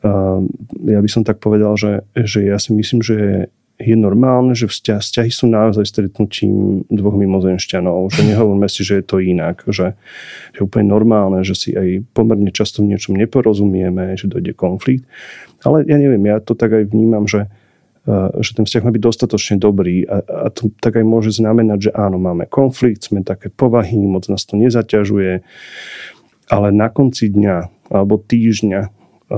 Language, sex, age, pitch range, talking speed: Slovak, male, 30-49, 100-115 Hz, 175 wpm